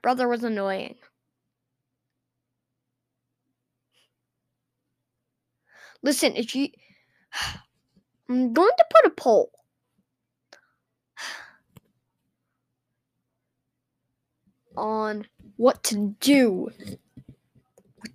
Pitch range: 210-345 Hz